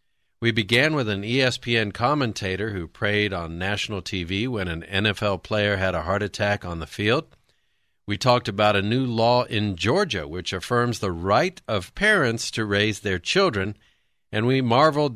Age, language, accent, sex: 50-69, English, American, male